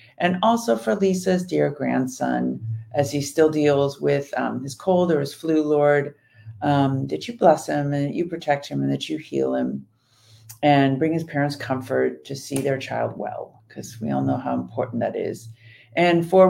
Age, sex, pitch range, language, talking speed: 50-69, female, 125-160 Hz, English, 190 wpm